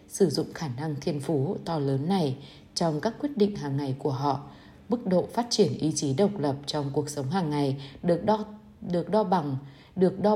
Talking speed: 215 wpm